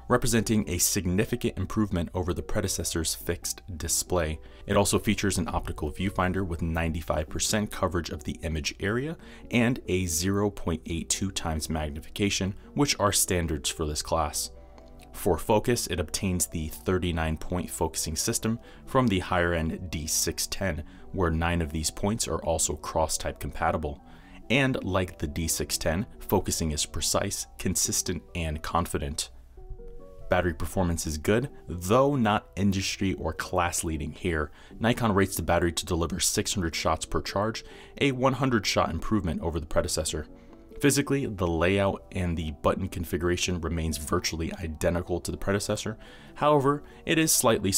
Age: 30-49